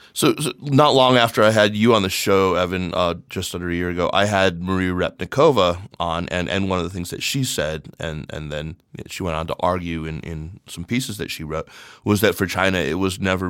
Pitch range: 85-100 Hz